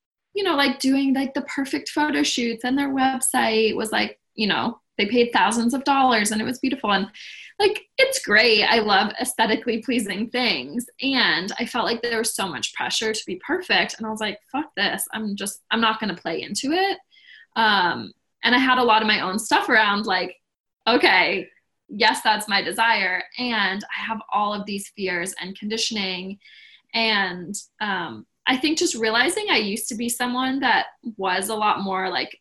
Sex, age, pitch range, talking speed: female, 20-39, 205-265 Hz, 195 wpm